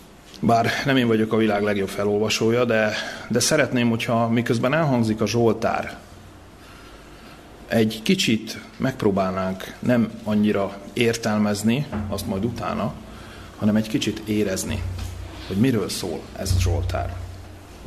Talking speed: 120 wpm